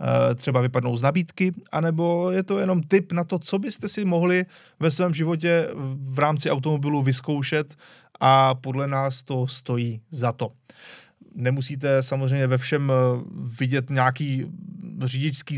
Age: 30-49